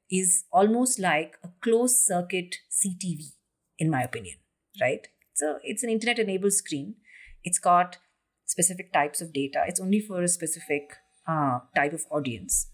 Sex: female